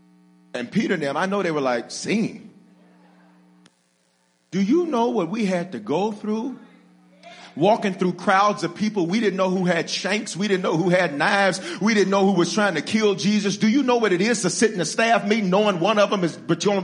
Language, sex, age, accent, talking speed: English, male, 40-59, American, 225 wpm